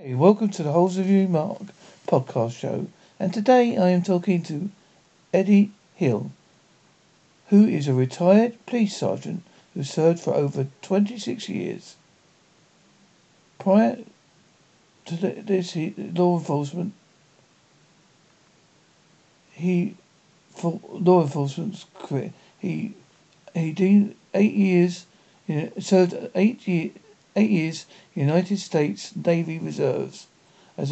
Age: 60-79